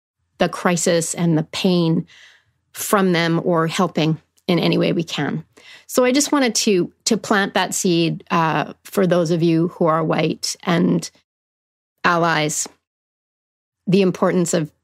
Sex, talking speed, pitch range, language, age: female, 145 wpm, 170-205 Hz, English, 40-59